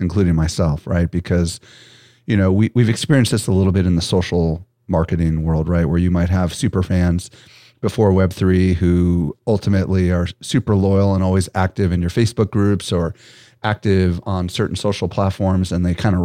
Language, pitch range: English, 90-110 Hz